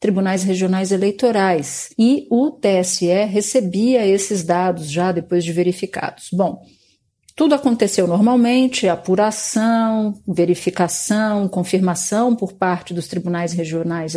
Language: Portuguese